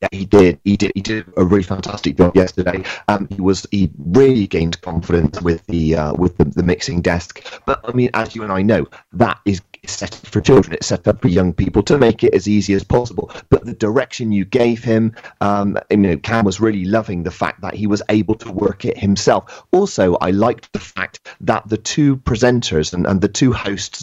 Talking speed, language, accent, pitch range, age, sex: 225 wpm, English, British, 100-125 Hz, 30-49, male